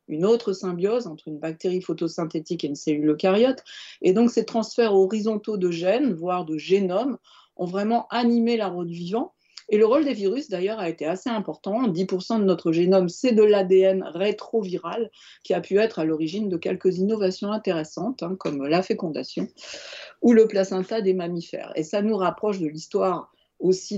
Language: French